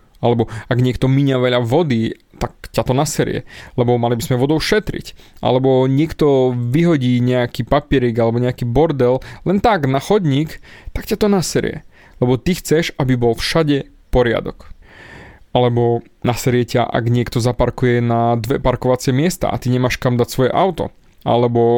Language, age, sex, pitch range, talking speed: Slovak, 20-39, male, 120-145 Hz, 155 wpm